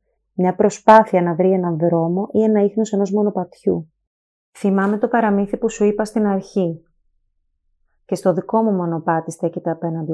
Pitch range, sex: 170-210 Hz, female